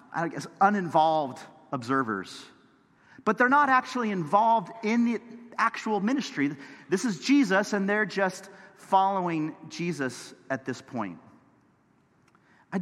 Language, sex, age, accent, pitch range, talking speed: English, male, 40-59, American, 175-235 Hz, 115 wpm